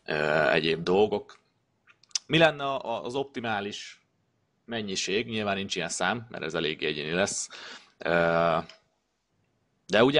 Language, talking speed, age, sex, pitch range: Hungarian, 105 wpm, 30-49, male, 85-105 Hz